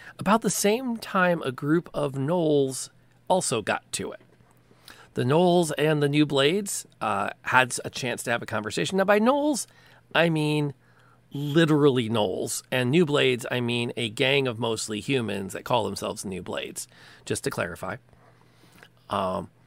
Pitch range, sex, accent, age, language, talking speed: 115-160 Hz, male, American, 40-59, English, 160 wpm